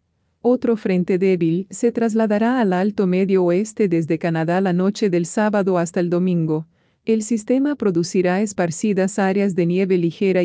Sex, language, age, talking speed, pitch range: female, English, 40-59, 150 wpm, 175-215 Hz